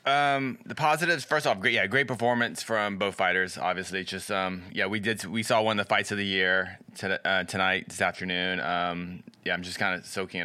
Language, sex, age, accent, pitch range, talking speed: English, male, 20-39, American, 95-120 Hz, 230 wpm